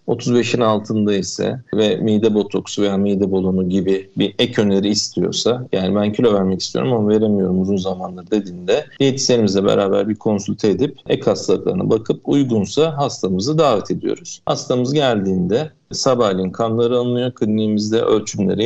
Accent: native